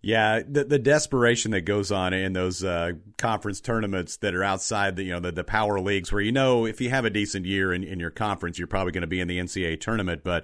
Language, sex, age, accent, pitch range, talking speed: English, male, 40-59, American, 90-115 Hz, 260 wpm